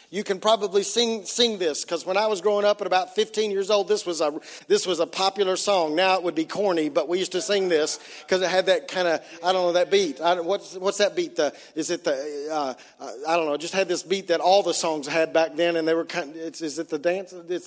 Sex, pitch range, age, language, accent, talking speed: male, 175-225 Hz, 40-59, English, American, 280 wpm